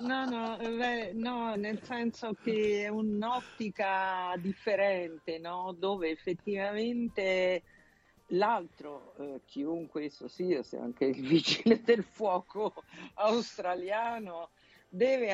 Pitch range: 165-220 Hz